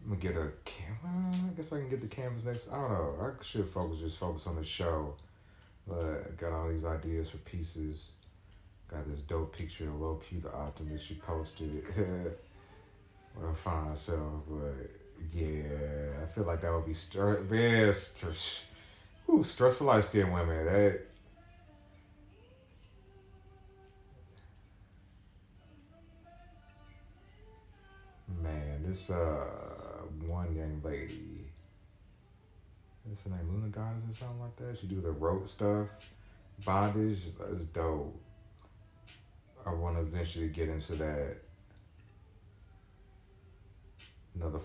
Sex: male